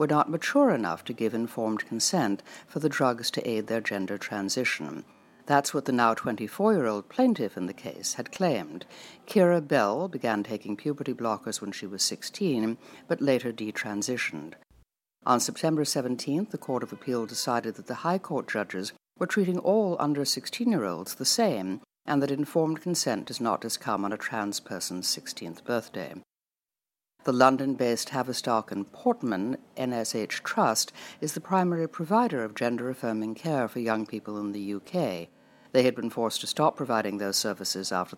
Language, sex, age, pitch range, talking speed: English, female, 60-79, 105-145 Hz, 160 wpm